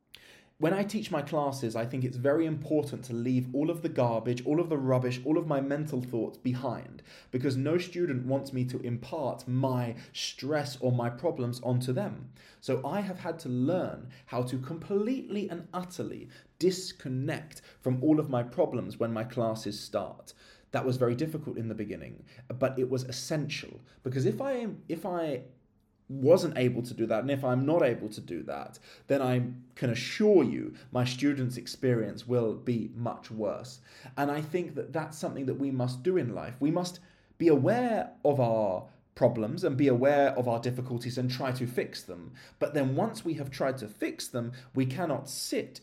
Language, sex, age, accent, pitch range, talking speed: English, male, 20-39, British, 120-150 Hz, 190 wpm